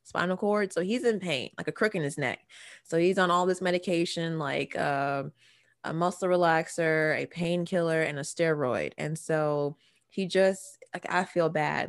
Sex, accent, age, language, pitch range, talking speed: female, American, 20-39, English, 155-180 Hz, 180 wpm